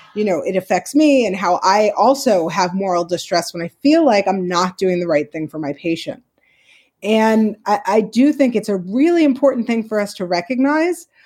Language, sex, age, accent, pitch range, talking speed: English, female, 30-49, American, 210-275 Hz, 210 wpm